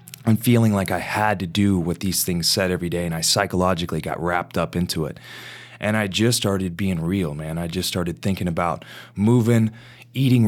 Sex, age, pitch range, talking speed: male, 20-39, 95-120 Hz, 200 wpm